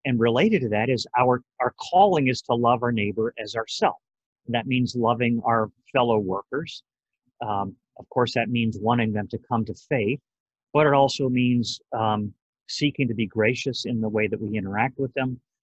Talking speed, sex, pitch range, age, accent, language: 190 wpm, male, 110-130 Hz, 40-59, American, English